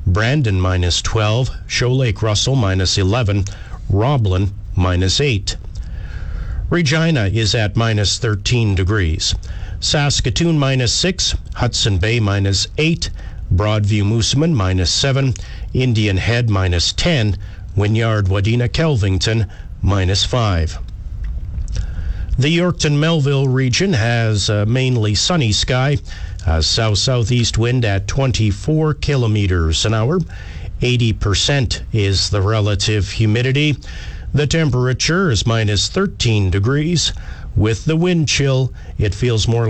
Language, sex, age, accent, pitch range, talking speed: English, male, 50-69, American, 95-130 Hz, 110 wpm